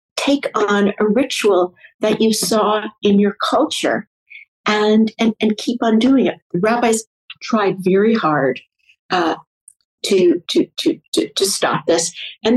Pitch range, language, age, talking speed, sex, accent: 185-230 Hz, English, 50-69, 145 wpm, female, American